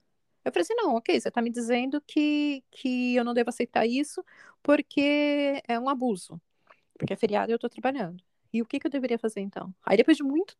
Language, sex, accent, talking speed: Portuguese, female, Brazilian, 220 wpm